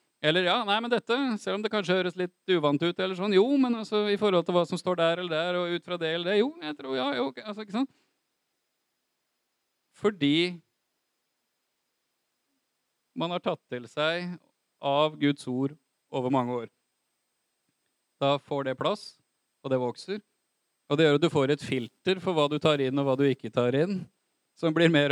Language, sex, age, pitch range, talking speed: Swedish, male, 30-49, 130-180 Hz, 195 wpm